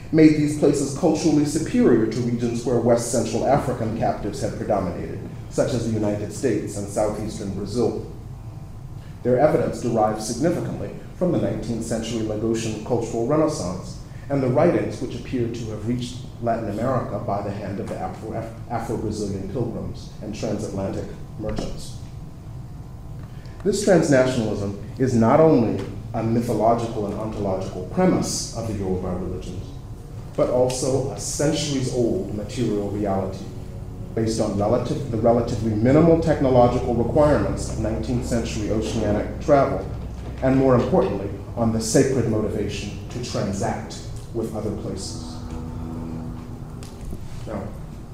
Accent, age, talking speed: American, 30-49, 125 wpm